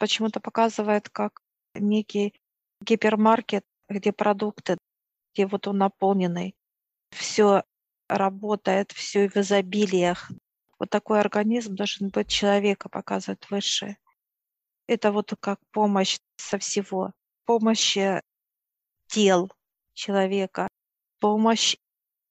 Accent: native